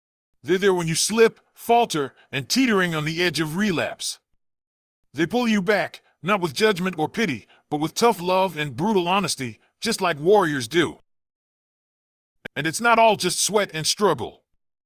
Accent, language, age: American, English, 40-59